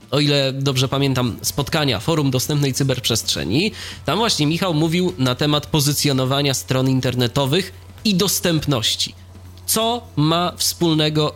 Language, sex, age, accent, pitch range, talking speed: Polish, male, 20-39, native, 140-175 Hz, 115 wpm